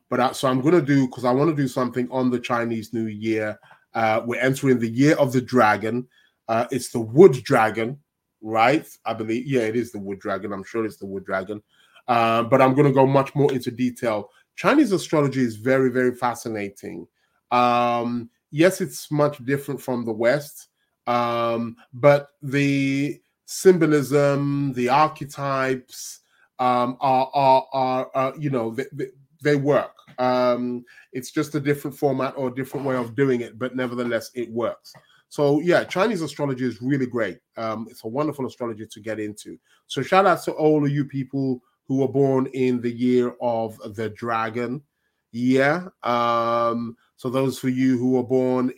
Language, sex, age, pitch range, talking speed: English, male, 20-39, 115-135 Hz, 175 wpm